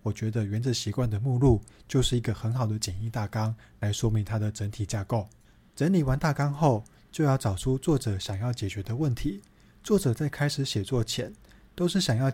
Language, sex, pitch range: Chinese, male, 110-145 Hz